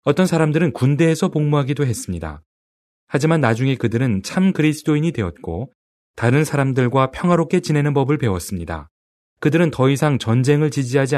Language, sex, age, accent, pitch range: Korean, male, 30-49, native, 105-150 Hz